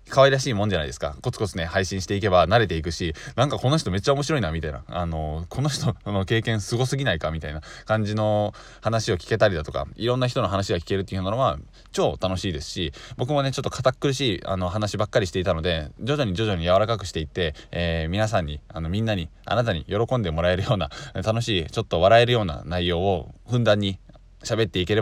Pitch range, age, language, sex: 85-110 Hz, 20-39, Japanese, male